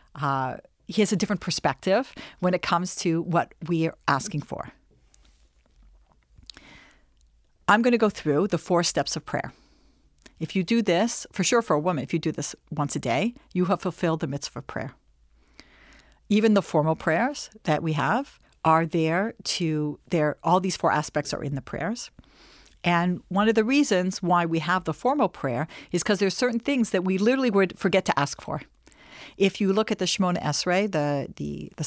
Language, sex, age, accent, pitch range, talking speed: English, female, 50-69, American, 150-210 Hz, 190 wpm